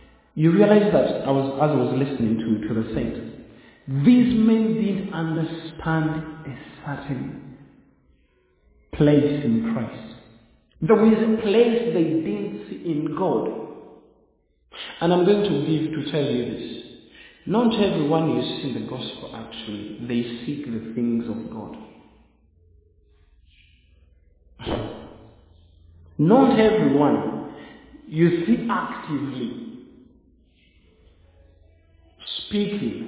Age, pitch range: 50-69, 110-160 Hz